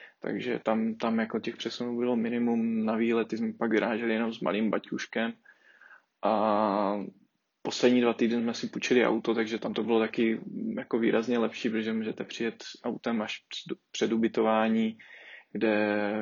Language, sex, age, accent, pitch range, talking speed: Czech, male, 20-39, native, 110-125 Hz, 150 wpm